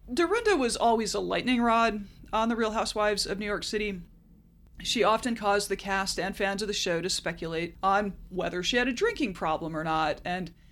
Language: English